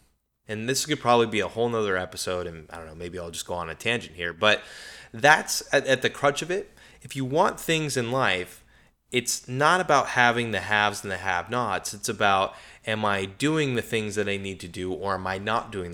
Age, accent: 20-39, American